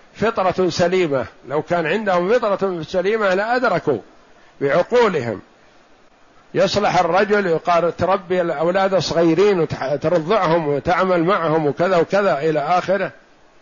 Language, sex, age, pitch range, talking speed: Arabic, male, 50-69, 160-200 Hz, 95 wpm